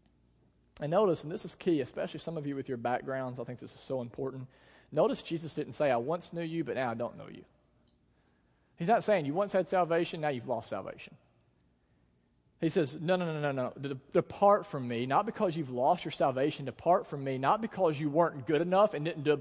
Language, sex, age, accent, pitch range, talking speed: English, male, 40-59, American, 105-165 Hz, 225 wpm